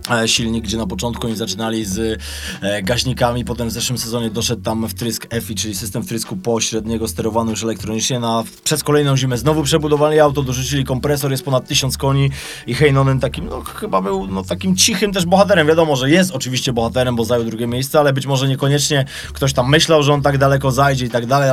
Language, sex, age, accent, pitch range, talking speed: Polish, male, 20-39, native, 115-135 Hz, 200 wpm